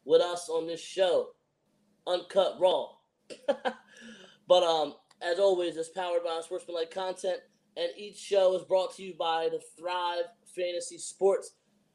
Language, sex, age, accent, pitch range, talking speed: English, male, 20-39, American, 170-210 Hz, 140 wpm